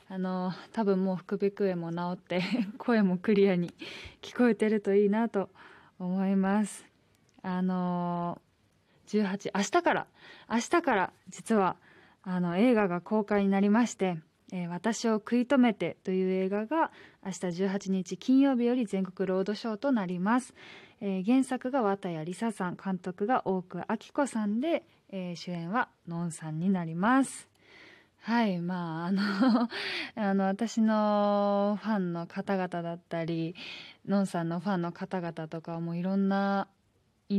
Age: 20-39